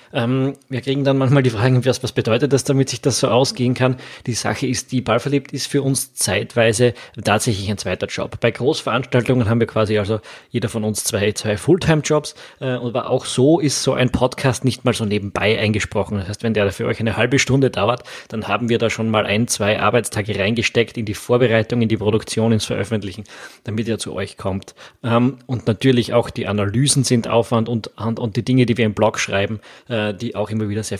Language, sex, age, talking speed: German, male, 20-39, 215 wpm